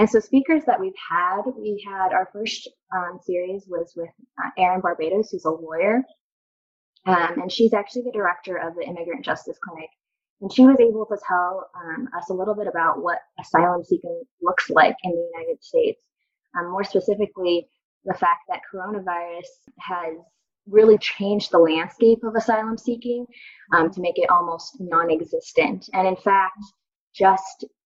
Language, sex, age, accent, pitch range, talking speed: English, female, 20-39, American, 180-245 Hz, 165 wpm